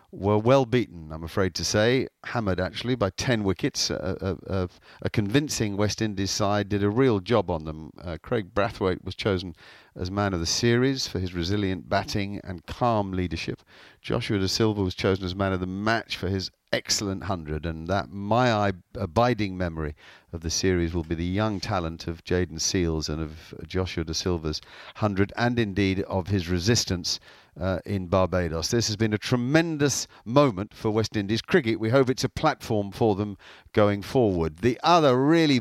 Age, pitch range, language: 50-69, 90-110 Hz, English